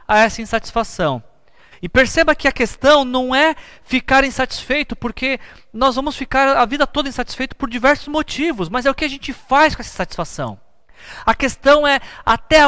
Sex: male